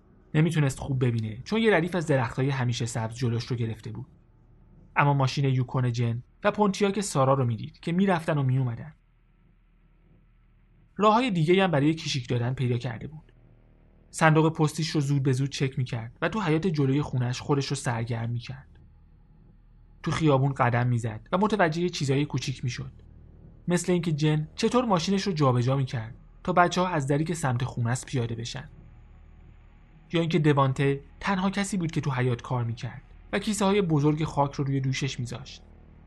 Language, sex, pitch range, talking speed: Persian, male, 120-155 Hz, 165 wpm